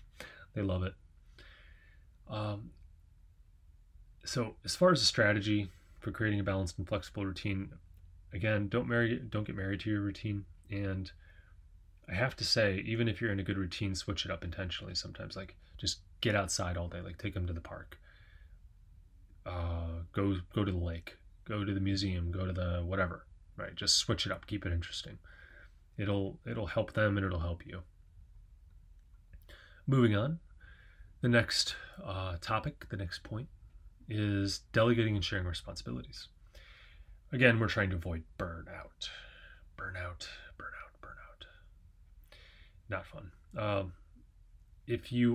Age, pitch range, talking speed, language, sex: 30-49, 85-105 Hz, 150 wpm, English, male